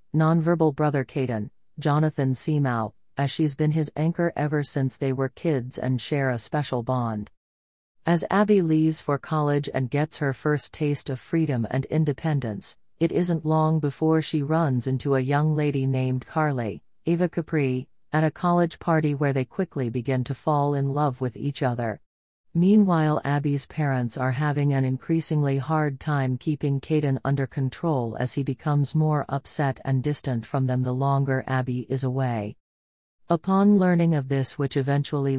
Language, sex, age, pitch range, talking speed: English, female, 40-59, 130-155 Hz, 165 wpm